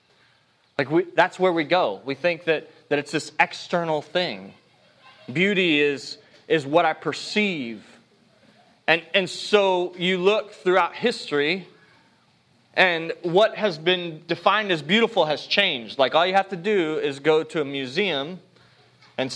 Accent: American